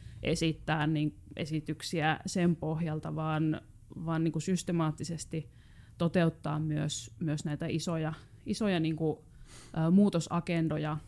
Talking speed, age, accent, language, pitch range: 110 wpm, 20-39, native, Finnish, 150-175 Hz